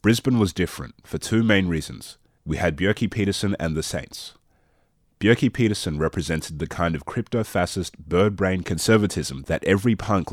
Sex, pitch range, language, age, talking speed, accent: male, 80-105 Hz, English, 30-49, 150 wpm, Australian